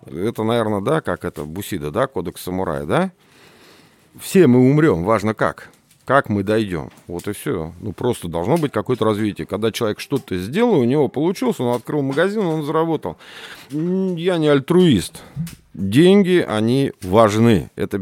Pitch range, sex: 100-150 Hz, male